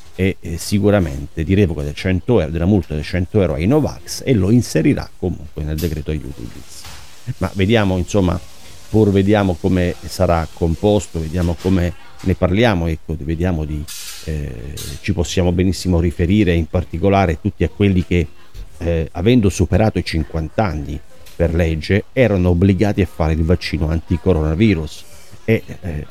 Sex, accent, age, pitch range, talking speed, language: male, native, 40-59, 80-100 Hz, 150 wpm, Italian